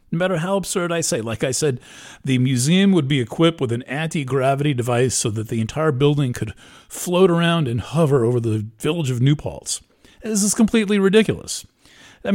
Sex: male